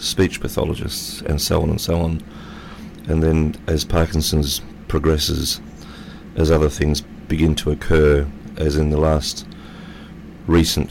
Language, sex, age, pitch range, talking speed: English, male, 40-59, 75-80 Hz, 130 wpm